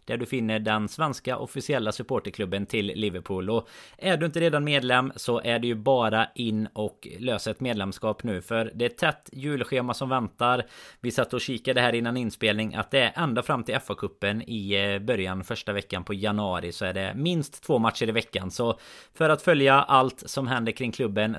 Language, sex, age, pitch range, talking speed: Swedish, male, 30-49, 105-135 Hz, 200 wpm